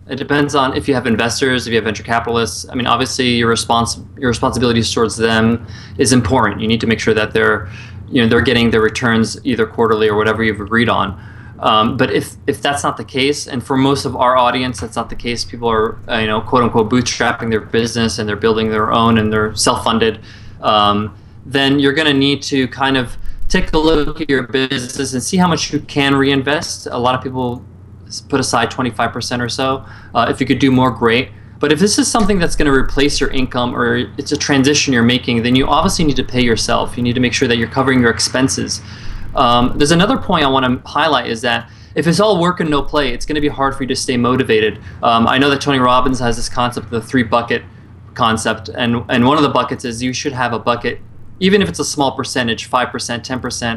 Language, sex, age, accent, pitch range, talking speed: English, male, 20-39, American, 110-135 Hz, 235 wpm